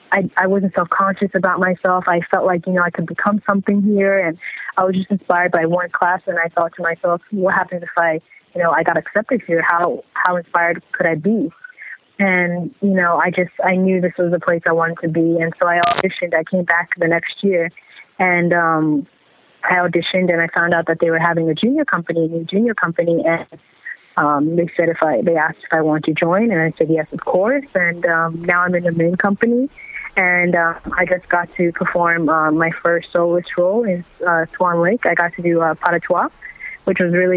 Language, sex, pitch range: English, female, 170-185 Hz